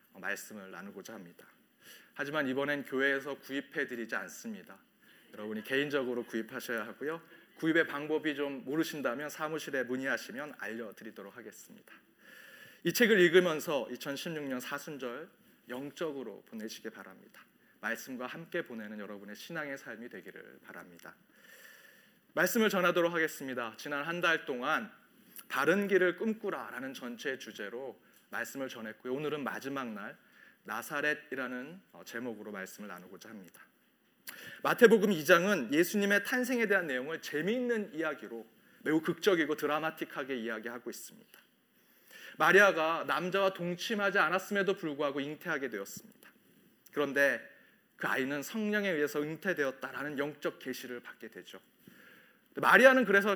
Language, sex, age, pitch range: Korean, male, 30-49, 135-185 Hz